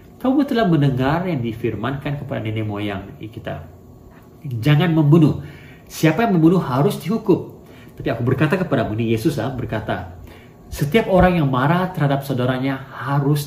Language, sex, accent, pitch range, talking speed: English, male, Indonesian, 110-145 Hz, 140 wpm